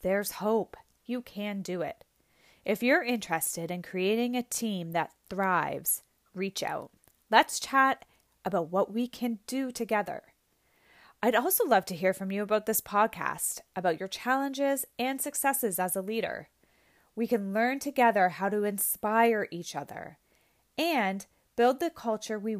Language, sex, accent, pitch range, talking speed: English, female, American, 185-255 Hz, 150 wpm